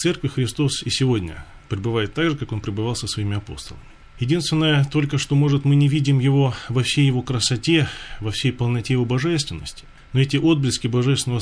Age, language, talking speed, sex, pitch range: 20-39, Russian, 185 wpm, male, 110-145 Hz